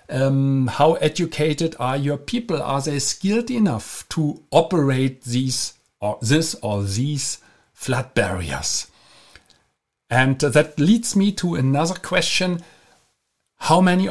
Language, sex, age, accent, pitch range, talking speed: English, male, 50-69, German, 120-160 Hz, 120 wpm